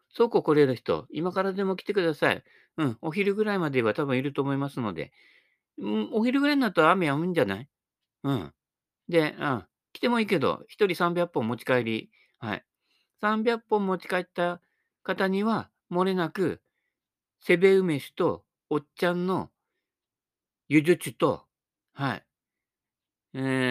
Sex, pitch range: male, 125-195 Hz